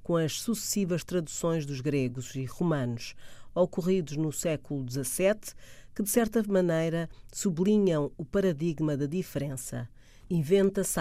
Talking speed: 115 wpm